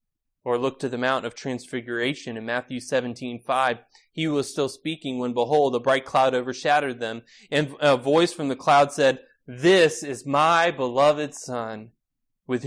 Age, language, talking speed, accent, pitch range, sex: 20-39, English, 165 wpm, American, 120-150 Hz, male